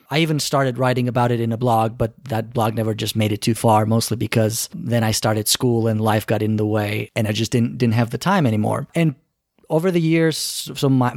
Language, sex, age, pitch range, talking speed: English, male, 30-49, 110-130 Hz, 240 wpm